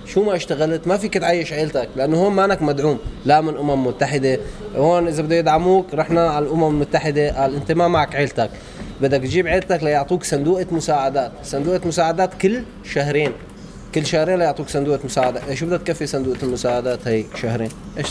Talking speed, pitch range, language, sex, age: 170 wpm, 135-170 Hz, Arabic, male, 20-39